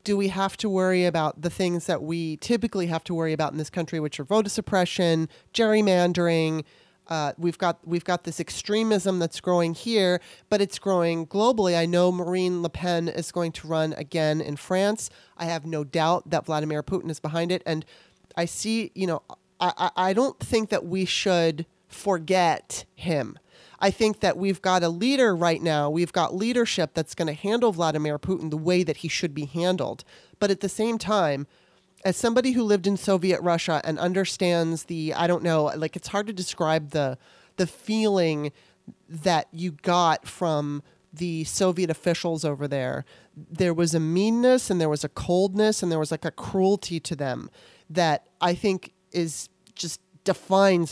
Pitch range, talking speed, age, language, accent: 160-190 Hz, 185 wpm, 30-49, English, American